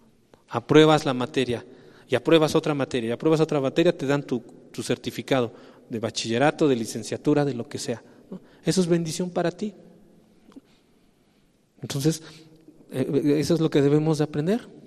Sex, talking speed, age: male, 155 wpm, 40-59